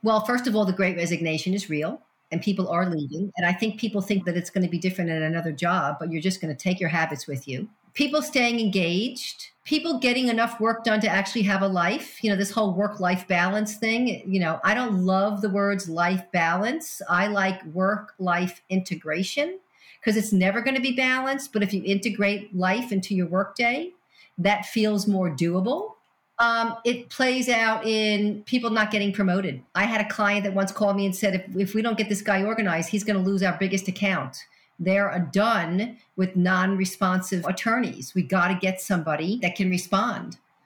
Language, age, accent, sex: English, 50-69, American, female